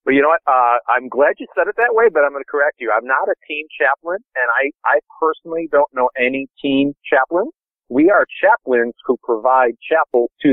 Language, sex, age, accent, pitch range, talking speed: English, male, 40-59, American, 120-180 Hz, 230 wpm